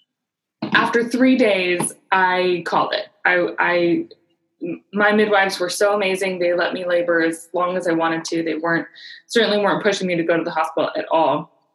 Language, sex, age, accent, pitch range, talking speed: English, female, 20-39, American, 170-215 Hz, 185 wpm